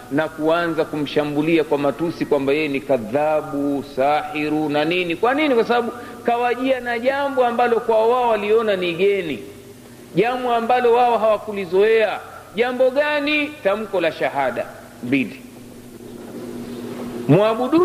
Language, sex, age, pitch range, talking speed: Swahili, male, 50-69, 165-245 Hz, 120 wpm